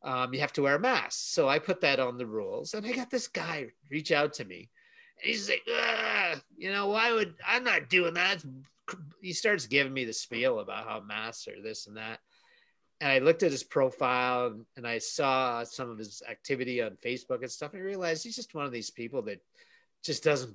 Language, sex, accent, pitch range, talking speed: English, male, American, 130-220 Hz, 220 wpm